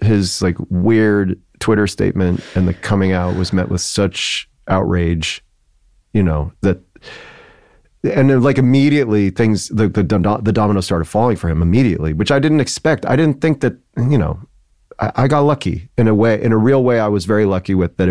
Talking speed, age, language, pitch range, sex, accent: 190 wpm, 30-49, English, 90-120 Hz, male, American